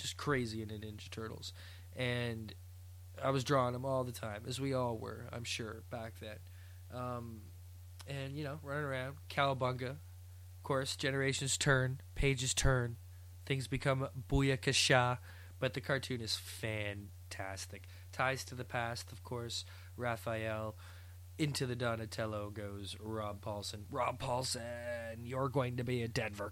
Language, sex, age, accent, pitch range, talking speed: English, male, 20-39, American, 100-135 Hz, 145 wpm